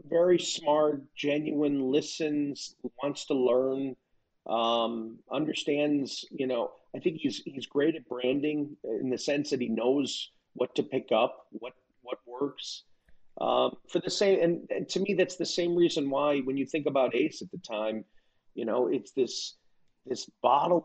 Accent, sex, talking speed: American, male, 165 wpm